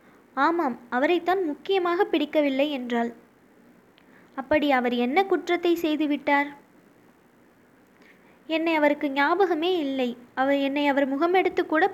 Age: 20-39